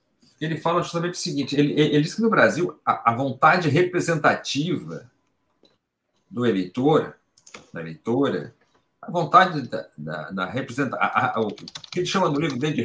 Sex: male